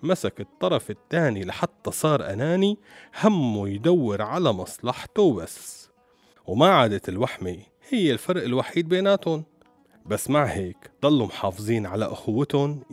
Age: 40-59